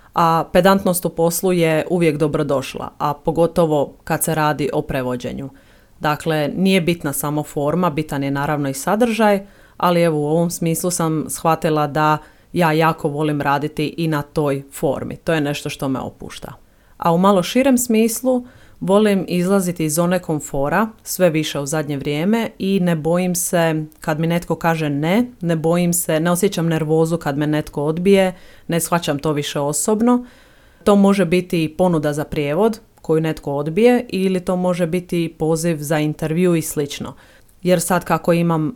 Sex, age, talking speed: female, 30-49, 165 wpm